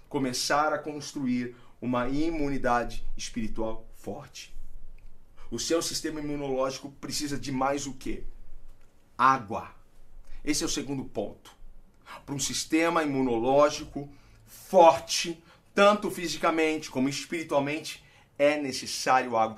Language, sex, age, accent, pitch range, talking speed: Portuguese, male, 40-59, Brazilian, 135-205 Hz, 105 wpm